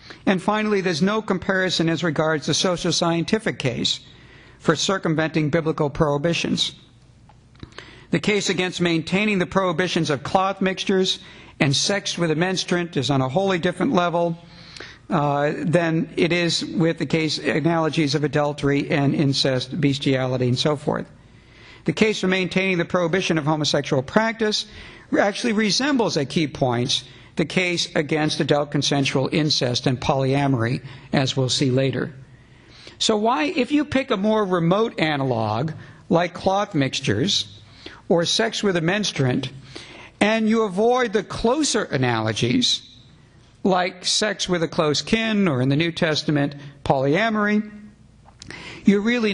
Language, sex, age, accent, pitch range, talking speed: English, male, 60-79, American, 140-190 Hz, 140 wpm